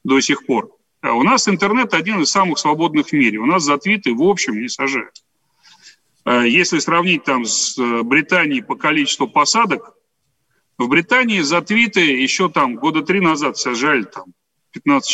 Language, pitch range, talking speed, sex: Russian, 150-225 Hz, 160 wpm, male